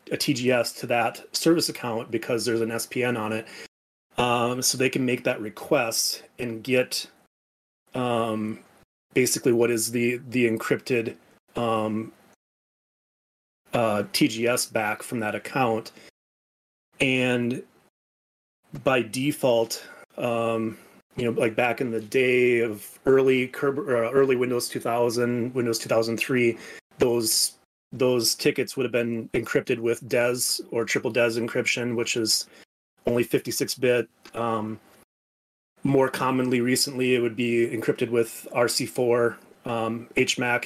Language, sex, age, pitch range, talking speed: English, male, 30-49, 115-125 Hz, 125 wpm